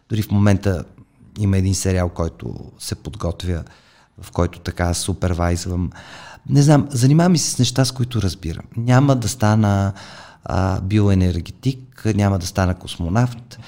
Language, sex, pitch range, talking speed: Bulgarian, male, 95-125 Hz, 135 wpm